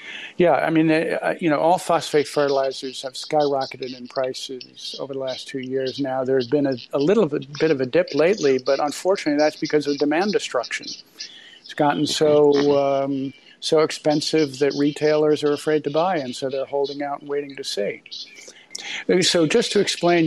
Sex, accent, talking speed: male, American, 185 wpm